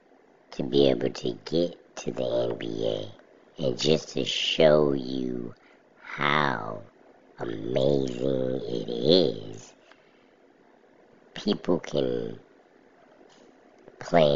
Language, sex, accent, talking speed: English, male, American, 85 wpm